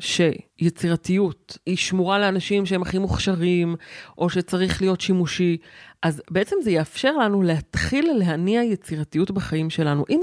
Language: Hebrew